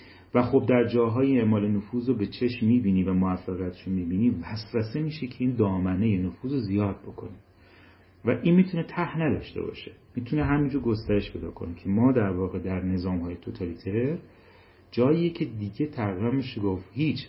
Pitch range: 95-125 Hz